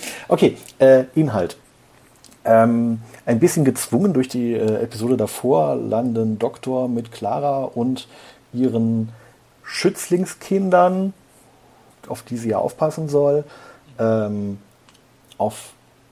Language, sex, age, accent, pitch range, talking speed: German, male, 40-59, German, 105-130 Hz, 100 wpm